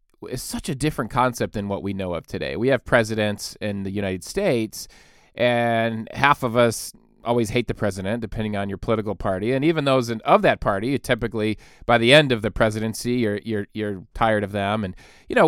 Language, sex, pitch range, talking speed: English, male, 105-140 Hz, 210 wpm